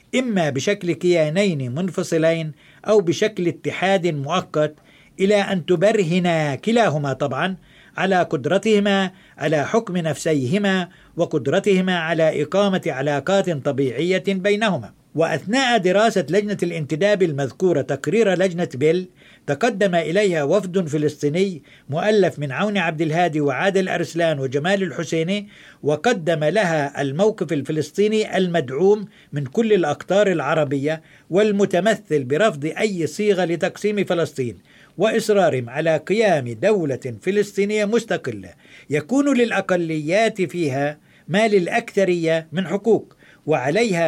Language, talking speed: Arabic, 100 wpm